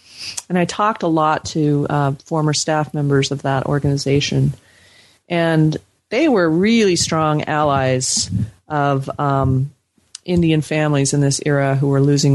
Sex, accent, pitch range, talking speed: female, American, 135-155 Hz, 140 wpm